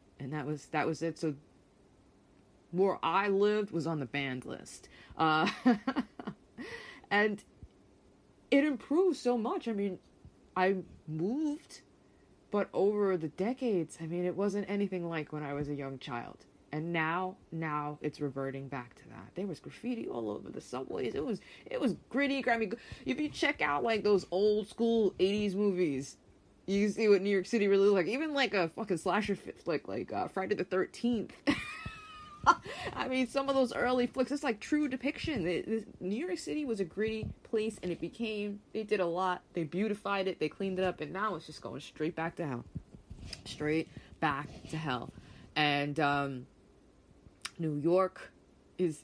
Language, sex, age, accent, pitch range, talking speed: English, female, 20-39, American, 155-225 Hz, 175 wpm